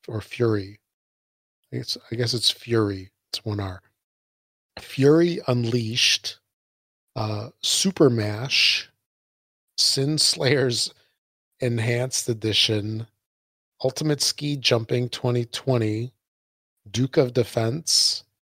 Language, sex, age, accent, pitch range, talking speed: English, male, 40-59, American, 105-130 Hz, 85 wpm